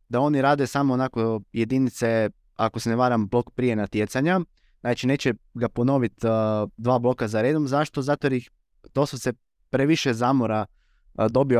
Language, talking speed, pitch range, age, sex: Croatian, 155 wpm, 115-140 Hz, 20-39, male